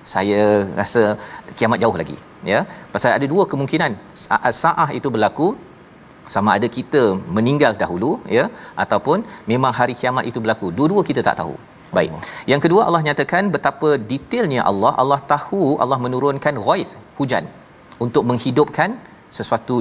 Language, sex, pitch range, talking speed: Malayalam, male, 120-140 Hz, 140 wpm